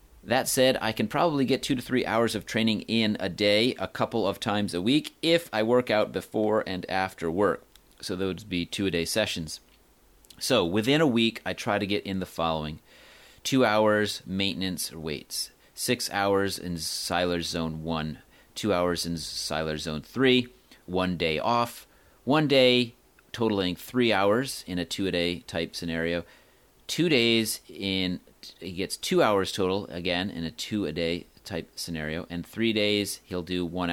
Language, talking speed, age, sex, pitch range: English, 170 wpm, 30-49, male, 85-115 Hz